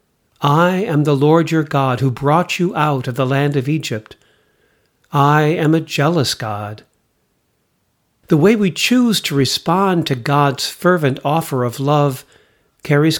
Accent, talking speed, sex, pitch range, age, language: American, 150 wpm, male, 130-165 Hz, 50-69, English